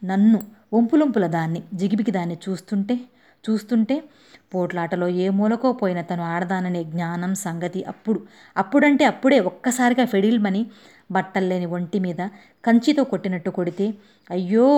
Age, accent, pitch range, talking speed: 20-39, native, 180-225 Hz, 110 wpm